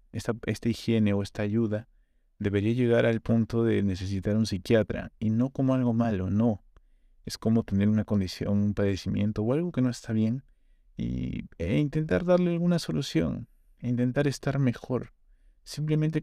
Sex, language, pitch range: male, Spanish, 100-115 Hz